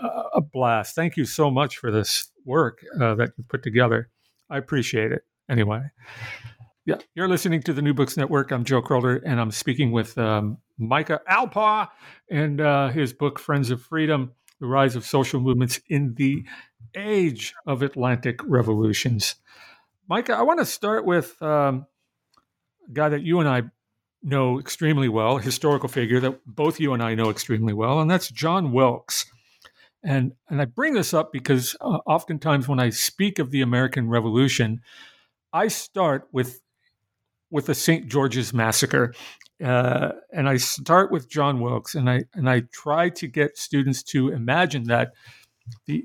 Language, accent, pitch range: English, American, 120-155 Hz